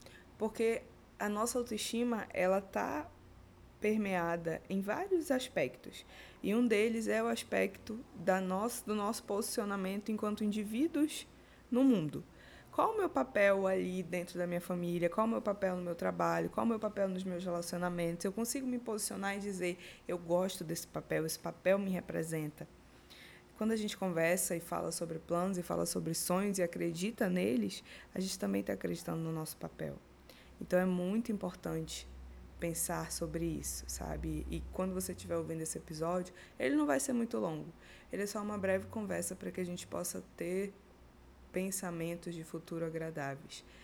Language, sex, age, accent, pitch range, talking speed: Portuguese, female, 20-39, Brazilian, 165-210 Hz, 165 wpm